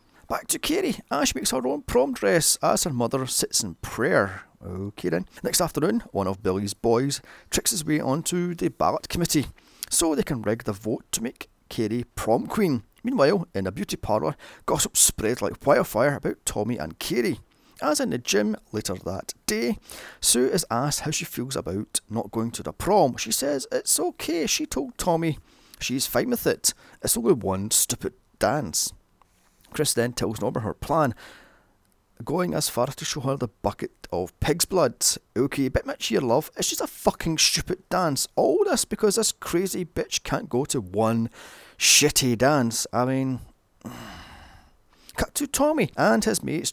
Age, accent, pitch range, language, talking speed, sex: 30-49, British, 110-175 Hz, English, 180 wpm, male